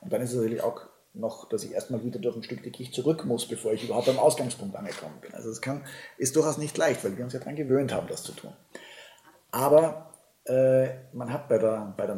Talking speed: 230 wpm